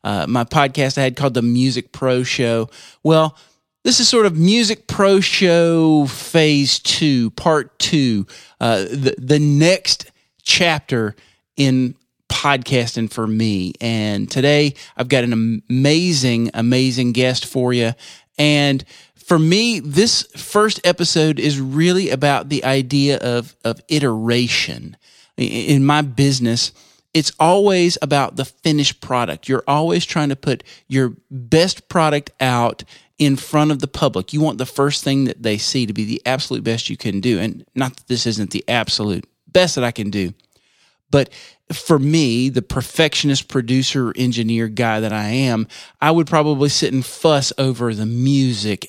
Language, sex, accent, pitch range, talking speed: English, male, American, 120-150 Hz, 155 wpm